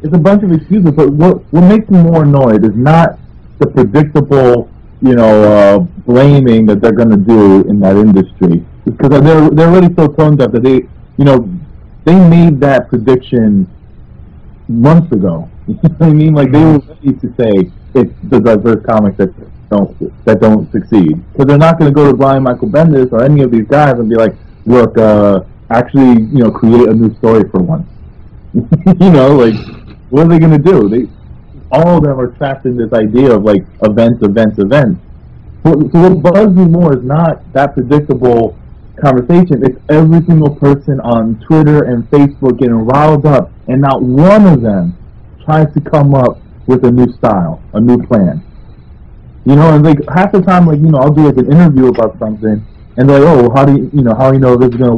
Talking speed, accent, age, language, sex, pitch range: 200 wpm, American, 30-49, English, male, 115-155 Hz